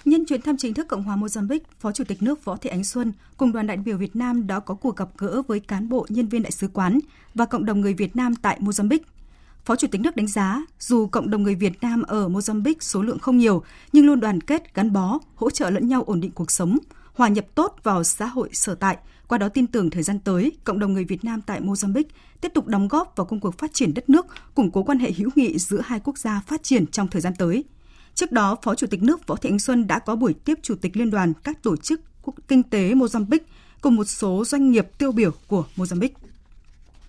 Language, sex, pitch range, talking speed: Vietnamese, female, 200-255 Hz, 255 wpm